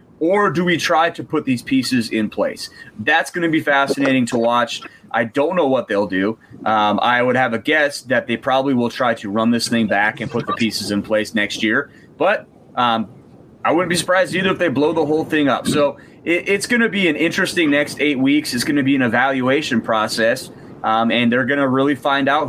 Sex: male